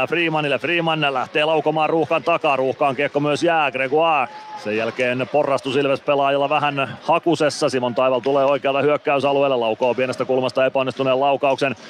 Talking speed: 135 wpm